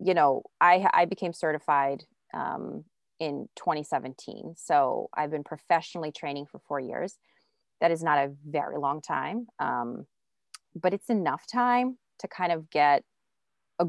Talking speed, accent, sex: 145 wpm, American, female